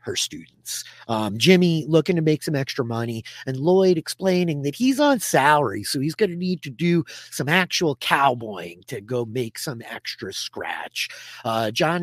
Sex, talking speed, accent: male, 175 wpm, American